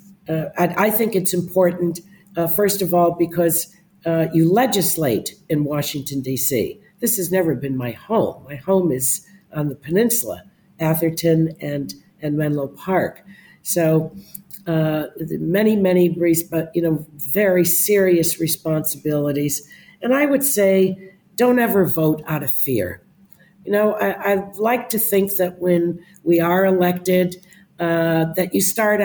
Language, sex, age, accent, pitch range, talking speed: English, female, 50-69, American, 160-190 Hz, 145 wpm